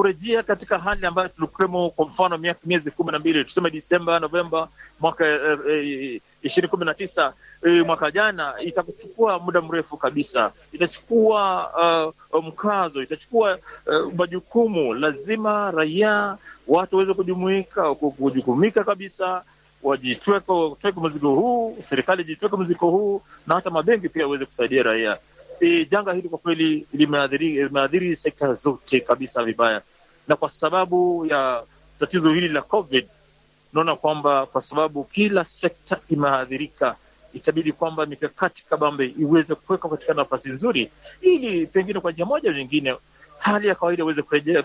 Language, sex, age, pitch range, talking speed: Swahili, male, 40-59, 155-195 Hz, 130 wpm